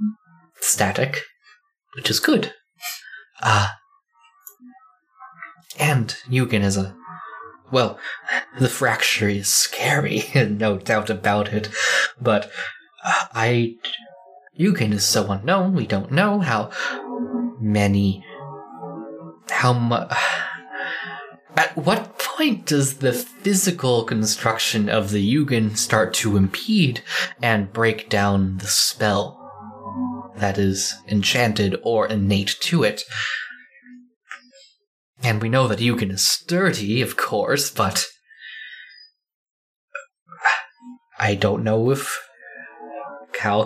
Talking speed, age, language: 100 wpm, 20-39, English